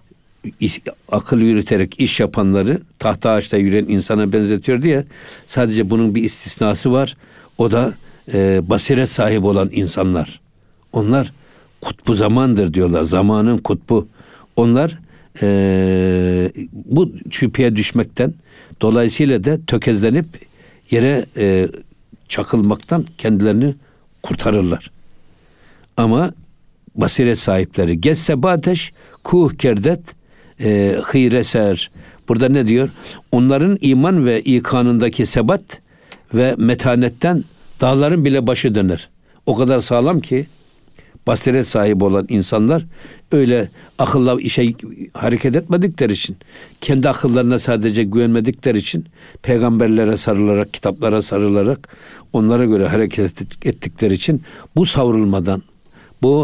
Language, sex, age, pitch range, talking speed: Turkish, male, 60-79, 105-135 Hz, 100 wpm